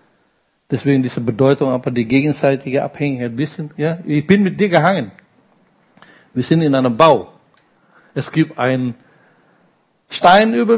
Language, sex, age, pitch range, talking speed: German, male, 60-79, 130-165 Hz, 140 wpm